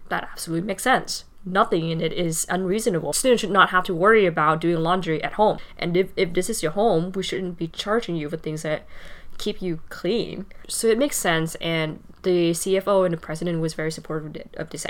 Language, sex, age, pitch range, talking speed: English, female, 10-29, 165-195 Hz, 215 wpm